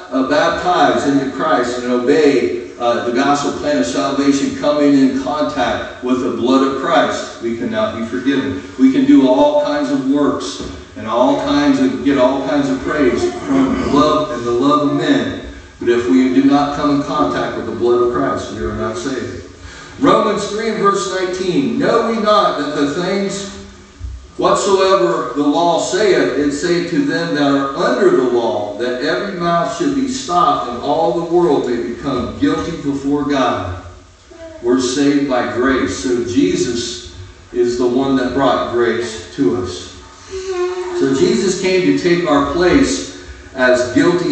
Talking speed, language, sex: 170 wpm, English, male